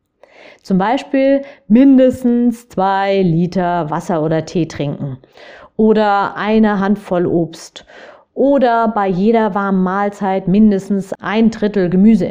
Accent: German